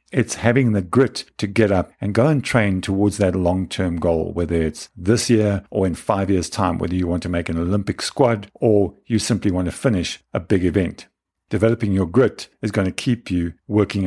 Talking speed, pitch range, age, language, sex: 215 wpm, 95-115 Hz, 50-69, English, male